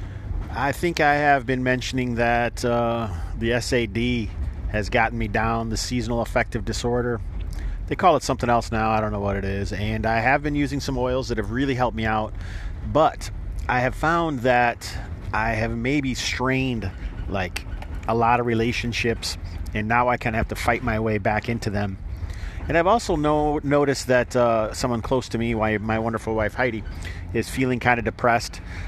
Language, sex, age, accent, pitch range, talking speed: English, male, 40-59, American, 100-125 Hz, 180 wpm